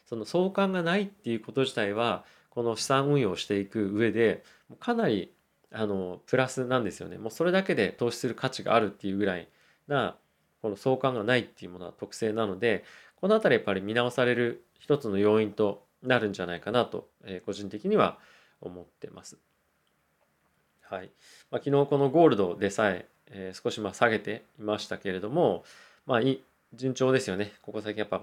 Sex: male